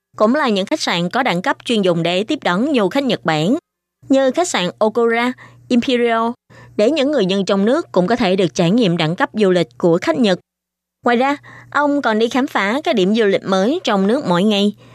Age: 20-39